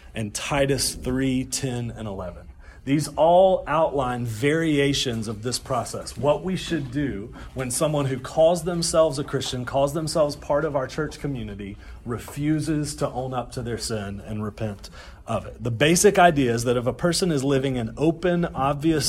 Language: English